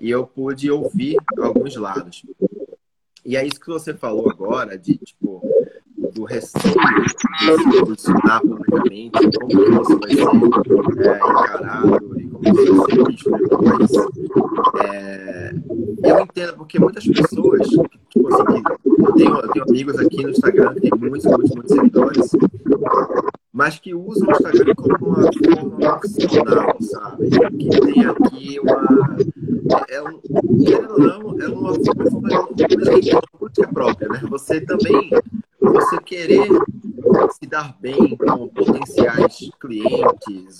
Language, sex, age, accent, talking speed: Portuguese, male, 30-49, Brazilian, 140 wpm